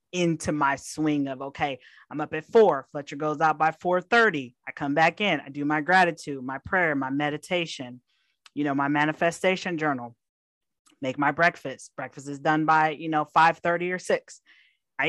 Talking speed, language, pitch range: 175 wpm, English, 145-185 Hz